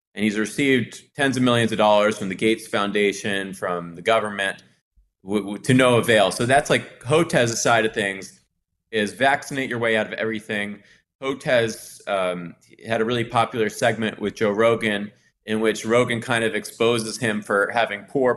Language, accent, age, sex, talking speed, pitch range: English, American, 20-39, male, 175 wpm, 100-120 Hz